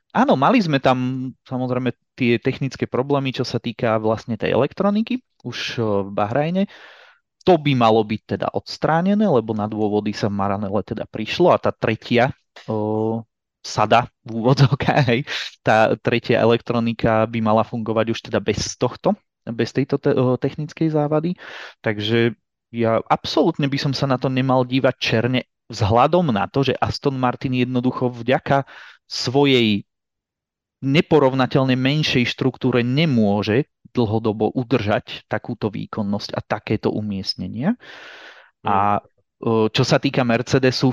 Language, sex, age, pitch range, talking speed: Czech, male, 30-49, 115-135 Hz, 130 wpm